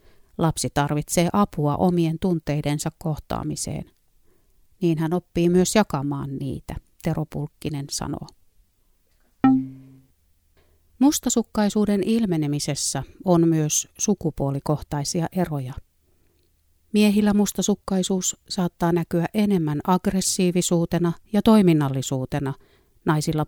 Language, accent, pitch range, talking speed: Finnish, native, 140-190 Hz, 75 wpm